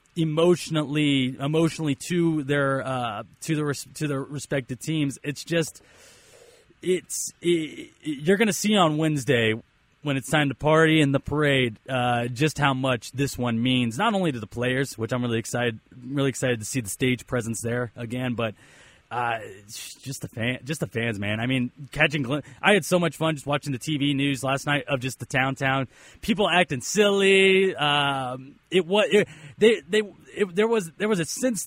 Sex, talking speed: male, 190 wpm